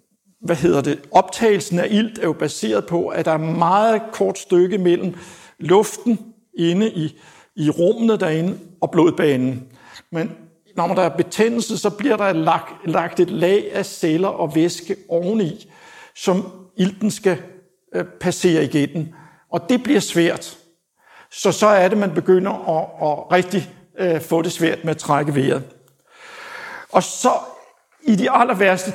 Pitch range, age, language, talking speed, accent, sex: 165-200 Hz, 60-79, Danish, 160 wpm, native, male